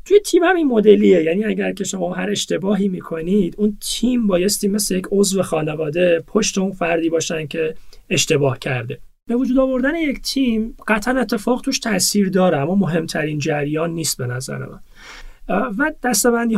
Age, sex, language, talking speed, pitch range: 30-49, male, Punjabi, 155 wpm, 155-210 Hz